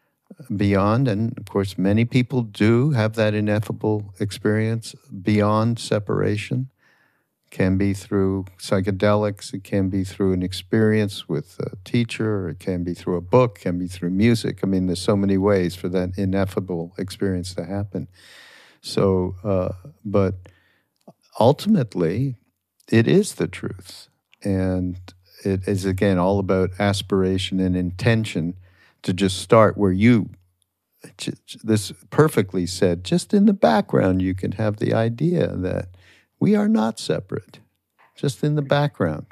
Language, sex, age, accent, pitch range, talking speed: English, male, 60-79, American, 95-110 Hz, 140 wpm